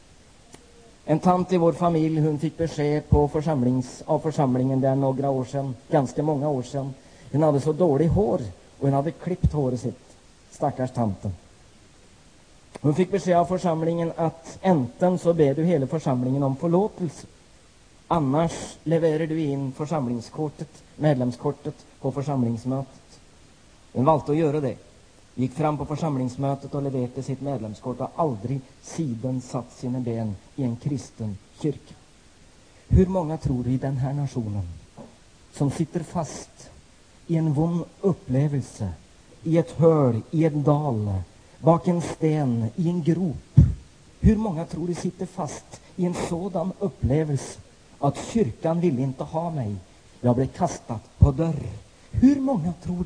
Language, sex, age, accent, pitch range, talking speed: Swedish, male, 30-49, native, 125-165 Hz, 145 wpm